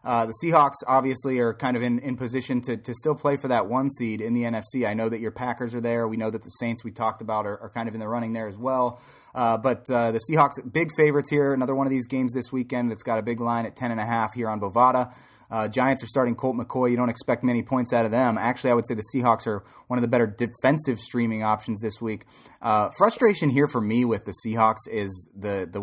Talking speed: 260 wpm